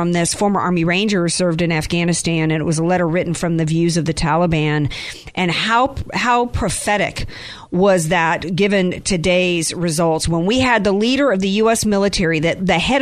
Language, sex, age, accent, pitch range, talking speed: English, female, 50-69, American, 175-290 Hz, 185 wpm